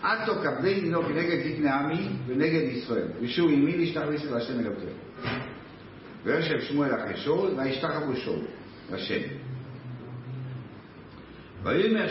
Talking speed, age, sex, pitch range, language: 105 wpm, 60-79, male, 125-205 Hz, Hebrew